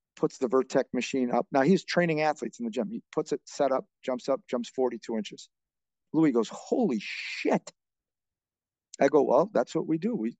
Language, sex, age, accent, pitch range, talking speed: English, male, 50-69, American, 125-180 Hz, 195 wpm